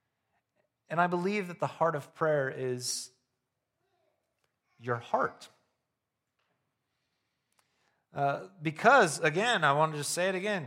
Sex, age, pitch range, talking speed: male, 40-59, 135-180 Hz, 120 wpm